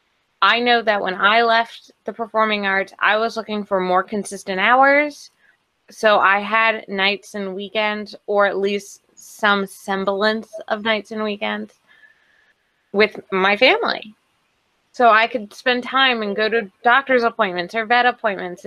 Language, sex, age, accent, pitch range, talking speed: English, female, 20-39, American, 190-225 Hz, 150 wpm